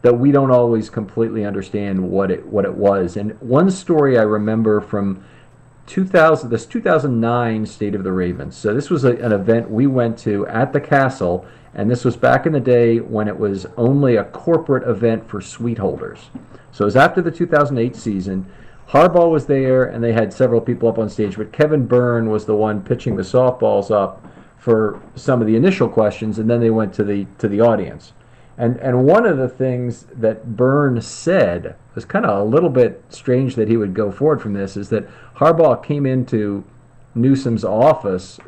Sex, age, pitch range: male, 50-69, 105-130 Hz